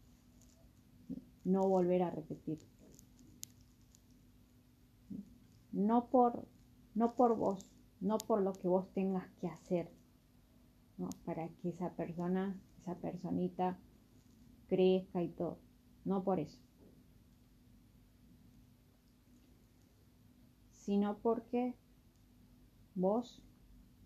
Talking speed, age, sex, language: 80 wpm, 30-49, female, Spanish